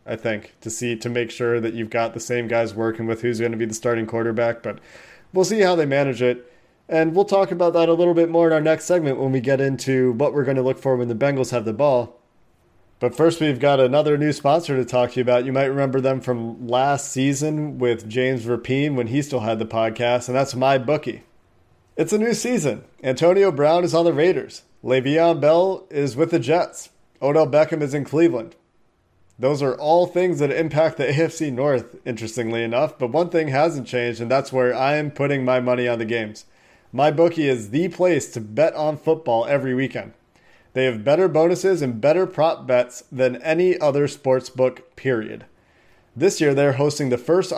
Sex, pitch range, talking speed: male, 120-160 Hz, 215 wpm